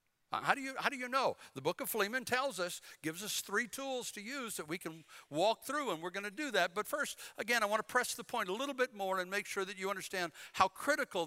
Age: 60-79